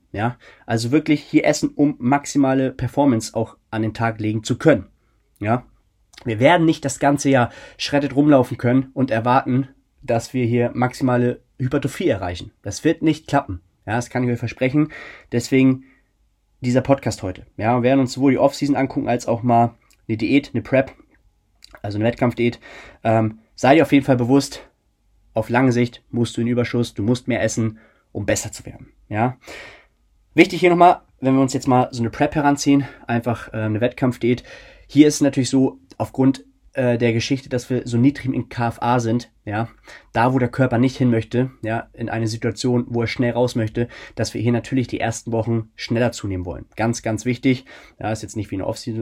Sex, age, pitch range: male, 20-39, 110-130 Hz